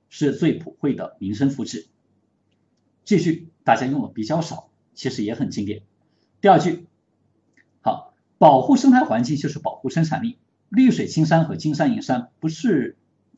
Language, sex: Chinese, male